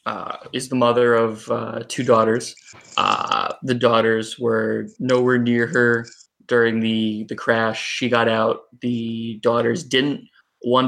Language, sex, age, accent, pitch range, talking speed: English, male, 20-39, American, 115-125 Hz, 145 wpm